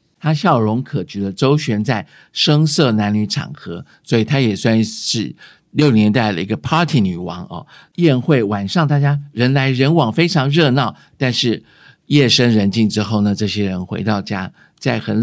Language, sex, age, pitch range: Chinese, male, 50-69, 105-140 Hz